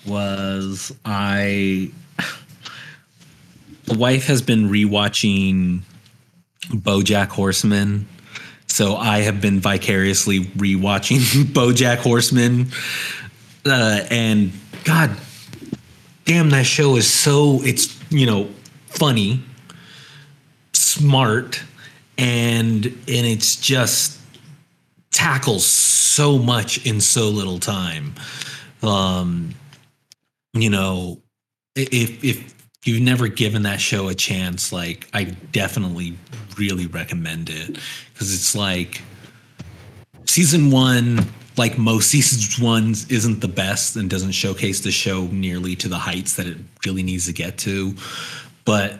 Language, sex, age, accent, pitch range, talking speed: English, male, 30-49, American, 95-130 Hz, 110 wpm